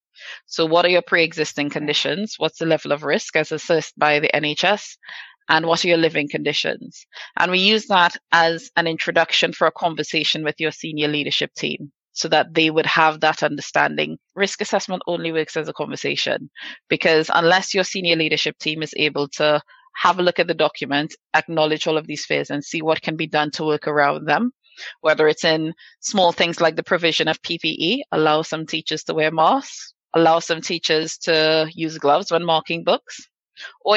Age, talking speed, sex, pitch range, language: 20-39, 190 wpm, female, 150-170 Hz, English